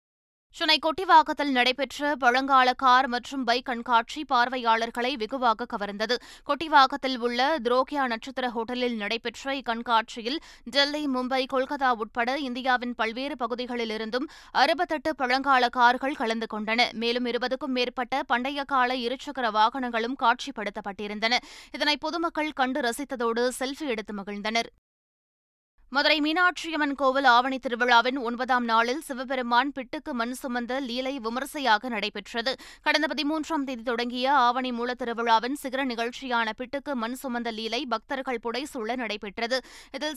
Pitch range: 235-280 Hz